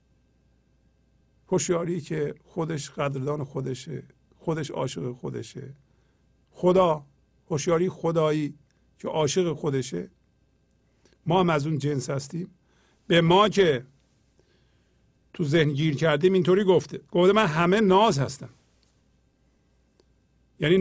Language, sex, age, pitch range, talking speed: English, male, 50-69, 130-190 Hz, 100 wpm